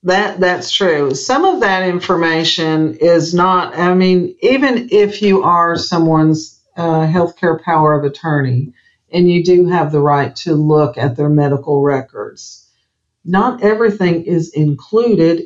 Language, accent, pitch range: English, American, 145-180 Hz